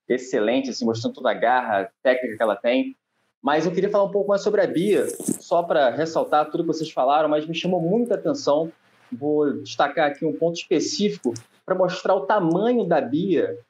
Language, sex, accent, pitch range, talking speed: Portuguese, male, Brazilian, 160-240 Hz, 195 wpm